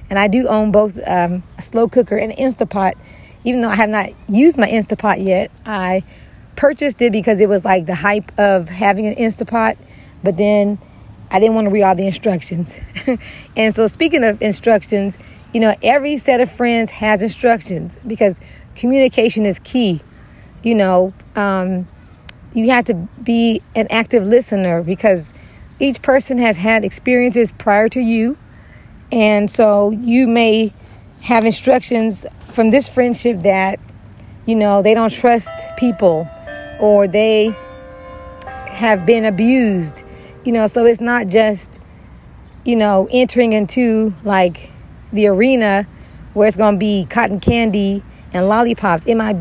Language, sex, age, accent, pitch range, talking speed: English, female, 40-59, American, 195-230 Hz, 150 wpm